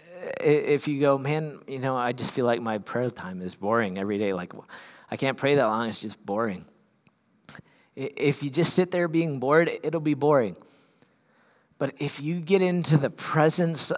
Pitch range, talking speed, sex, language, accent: 105-140 Hz, 185 wpm, male, English, American